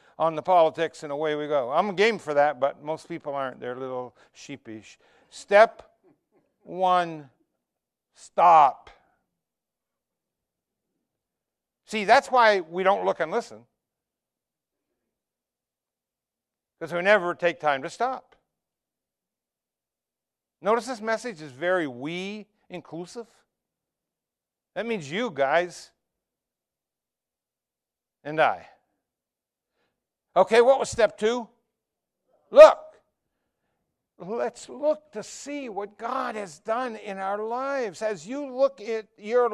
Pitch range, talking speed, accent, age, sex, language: 155-225 Hz, 110 wpm, American, 60-79, male, English